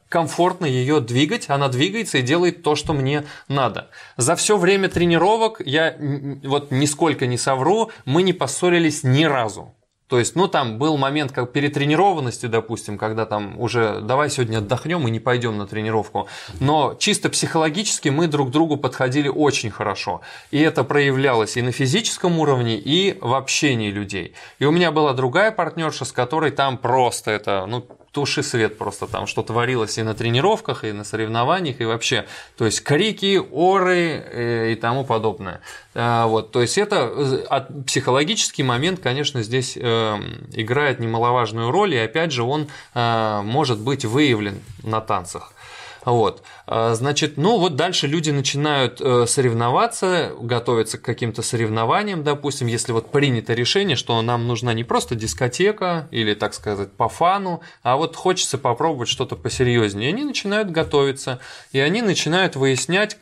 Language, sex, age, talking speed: Russian, male, 20-39, 150 wpm